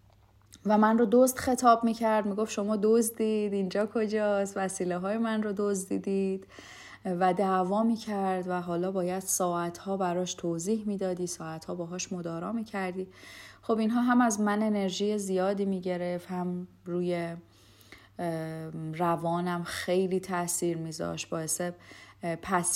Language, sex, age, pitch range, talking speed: Persian, female, 30-49, 170-200 Hz, 125 wpm